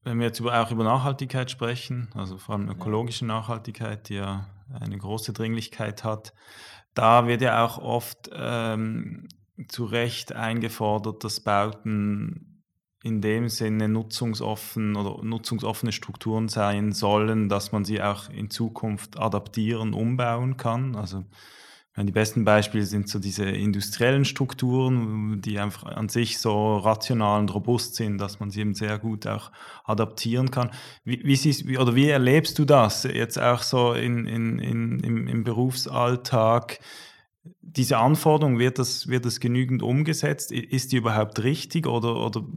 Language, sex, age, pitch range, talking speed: German, male, 20-39, 110-125 Hz, 145 wpm